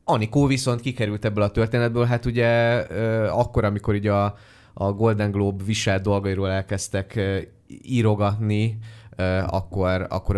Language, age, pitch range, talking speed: Hungarian, 20-39, 90-110 Hz, 140 wpm